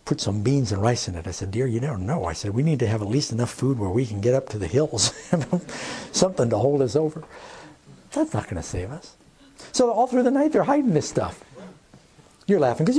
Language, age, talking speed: Danish, 60-79, 250 wpm